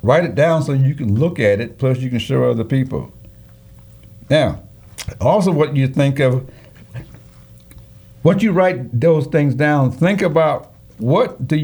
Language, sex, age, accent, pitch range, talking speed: English, male, 60-79, American, 110-155 Hz, 160 wpm